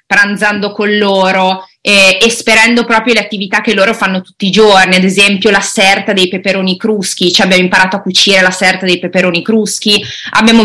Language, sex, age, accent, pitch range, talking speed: Italian, female, 20-39, native, 185-235 Hz, 185 wpm